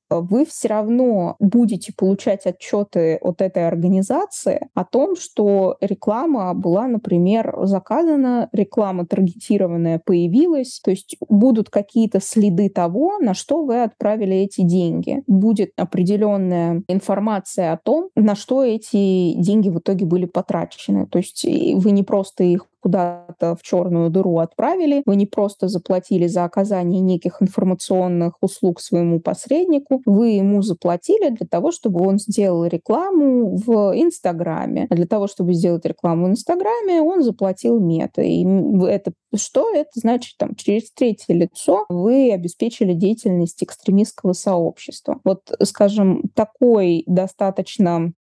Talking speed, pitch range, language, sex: 130 wpm, 180-245 Hz, Russian, female